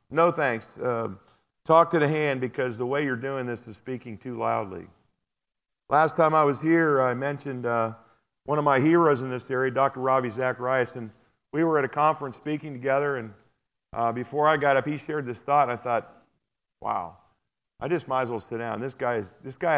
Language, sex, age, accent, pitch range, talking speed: English, male, 50-69, American, 125-160 Hz, 210 wpm